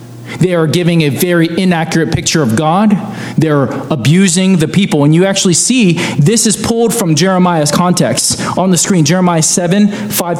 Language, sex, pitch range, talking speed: English, male, 155-230 Hz, 165 wpm